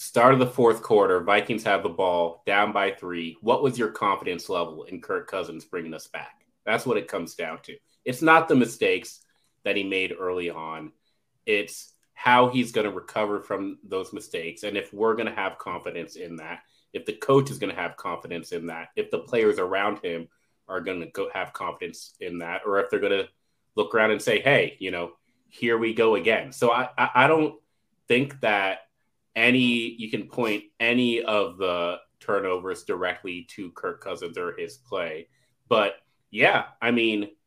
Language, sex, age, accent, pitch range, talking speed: English, male, 30-49, American, 100-160 Hz, 190 wpm